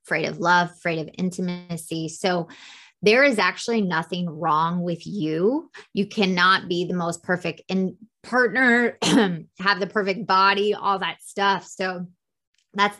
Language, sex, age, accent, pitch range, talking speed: English, female, 20-39, American, 165-200 Hz, 140 wpm